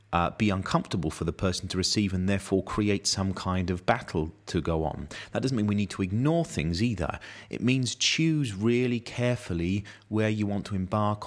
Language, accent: English, British